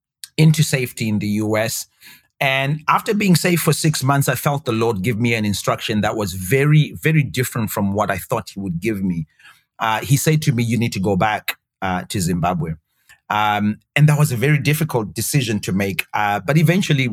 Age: 30-49